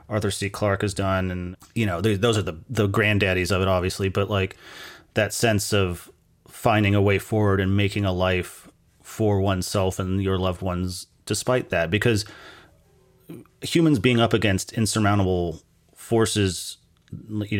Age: 30-49